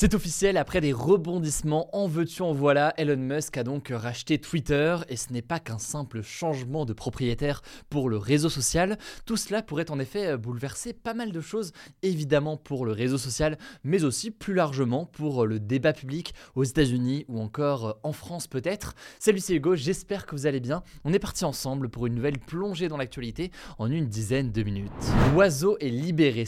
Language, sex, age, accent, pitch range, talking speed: French, male, 20-39, French, 125-165 Hz, 195 wpm